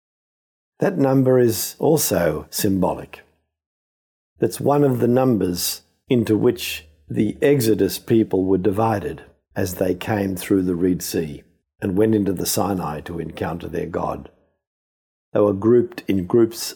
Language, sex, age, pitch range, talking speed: English, male, 50-69, 85-115 Hz, 135 wpm